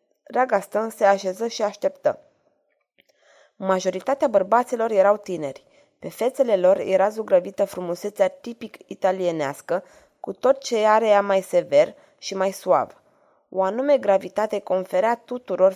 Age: 20-39